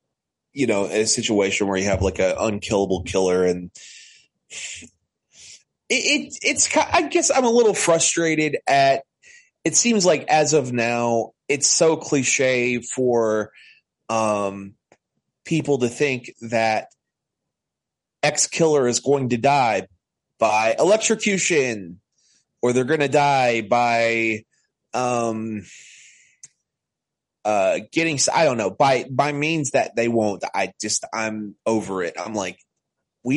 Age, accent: 30-49, American